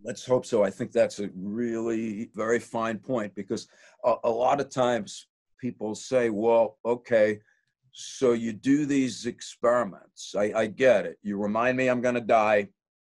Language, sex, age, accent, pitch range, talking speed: English, male, 50-69, American, 115-140 Hz, 170 wpm